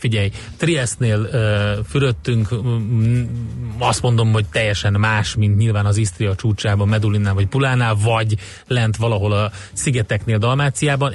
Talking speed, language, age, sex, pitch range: 135 wpm, Hungarian, 30-49, male, 105-125 Hz